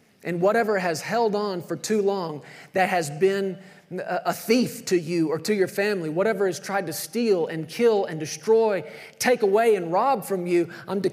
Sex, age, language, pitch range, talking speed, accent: male, 40-59, English, 180-230 Hz, 190 wpm, American